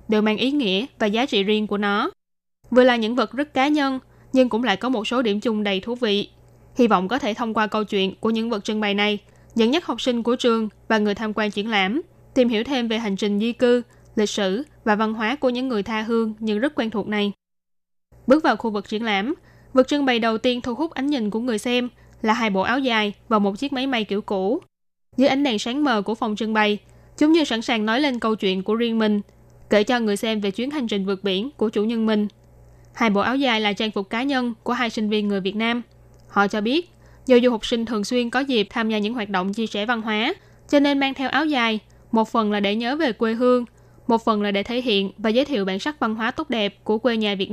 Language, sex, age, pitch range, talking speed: Vietnamese, female, 10-29, 210-250 Hz, 265 wpm